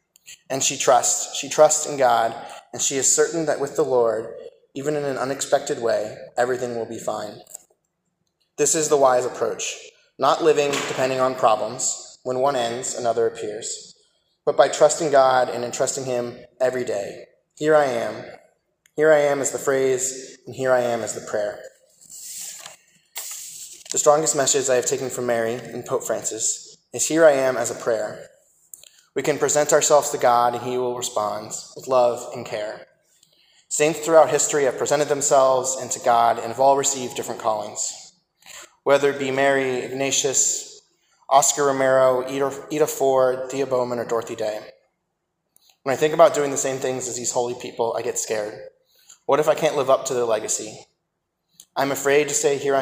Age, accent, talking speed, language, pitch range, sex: 20-39, American, 175 wpm, English, 125-150 Hz, male